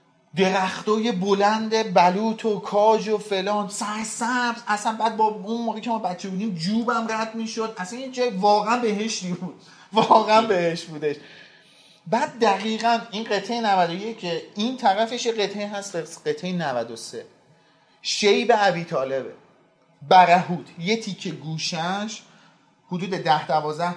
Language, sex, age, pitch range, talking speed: Persian, male, 40-59, 170-220 Hz, 140 wpm